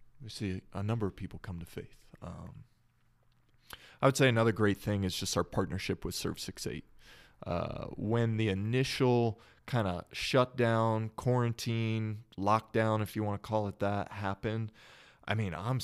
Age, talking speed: 20-39, 155 wpm